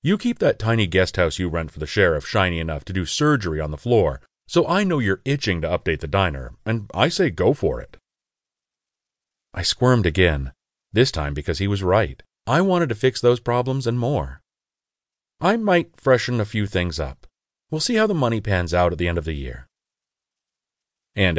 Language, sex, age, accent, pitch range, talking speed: English, male, 40-59, American, 85-120 Hz, 200 wpm